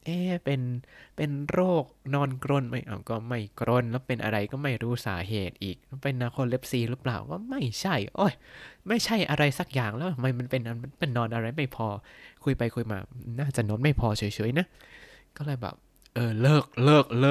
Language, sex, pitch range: Thai, male, 105-140 Hz